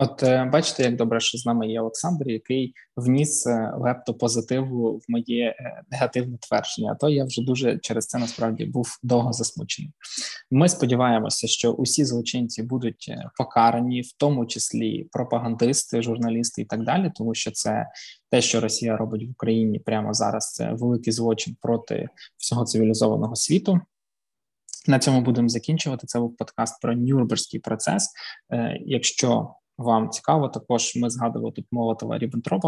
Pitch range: 115-130 Hz